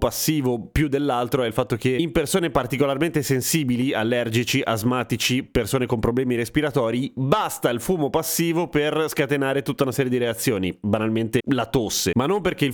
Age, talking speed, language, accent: 30-49, 165 wpm, Italian, native